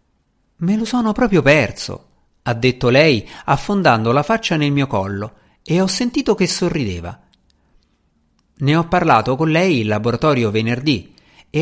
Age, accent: 50-69, native